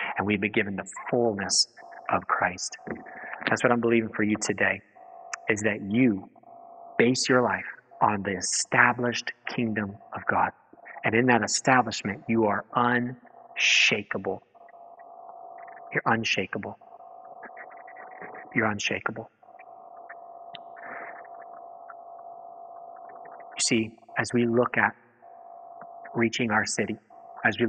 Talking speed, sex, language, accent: 105 wpm, male, English, American